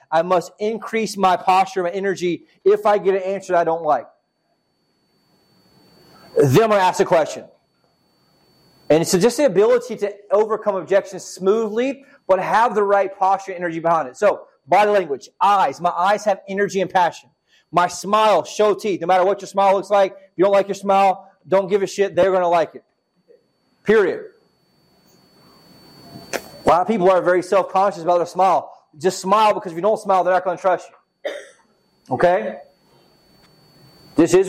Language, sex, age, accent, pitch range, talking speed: English, male, 30-49, American, 180-210 Hz, 180 wpm